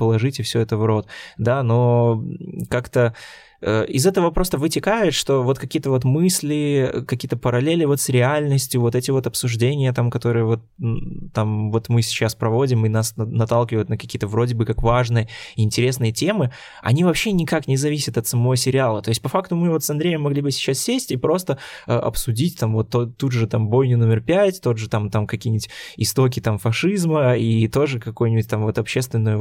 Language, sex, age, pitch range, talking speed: Russian, male, 20-39, 110-135 Hz, 185 wpm